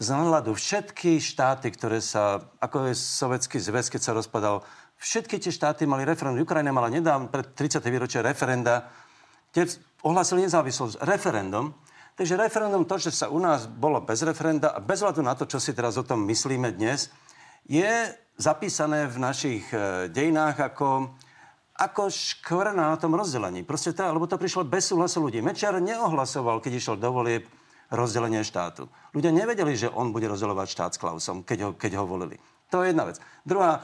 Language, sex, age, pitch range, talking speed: Slovak, male, 50-69, 120-165 Hz, 170 wpm